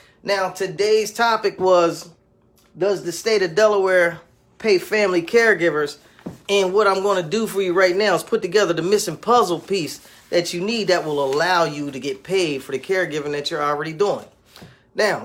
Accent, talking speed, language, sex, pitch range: American, 185 wpm, English, male, 160-200 Hz